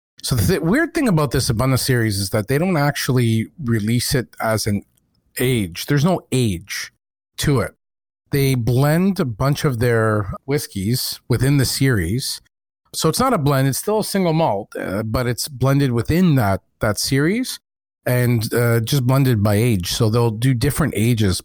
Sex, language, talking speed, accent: male, English, 175 wpm, American